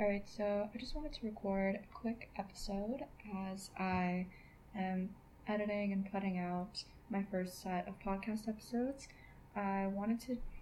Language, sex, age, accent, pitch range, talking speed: English, female, 10-29, American, 190-215 Hz, 145 wpm